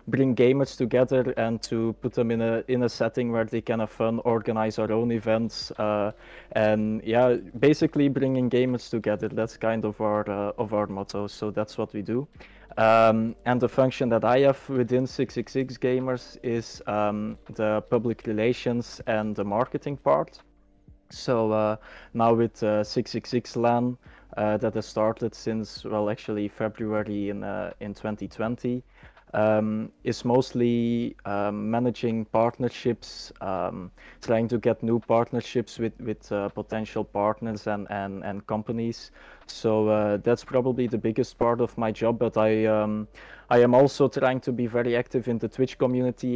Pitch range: 110-120 Hz